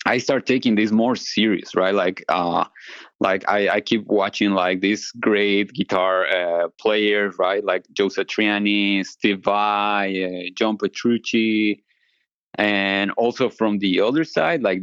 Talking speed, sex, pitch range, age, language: 145 wpm, male, 95-105 Hz, 20-39, English